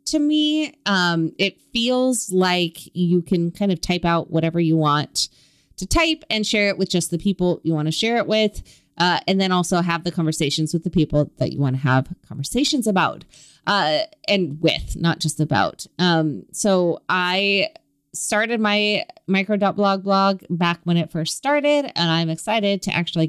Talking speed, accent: 185 wpm, American